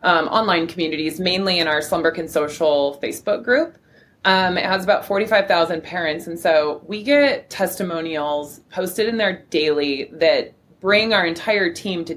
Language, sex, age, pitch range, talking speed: English, female, 20-39, 155-200 Hz, 155 wpm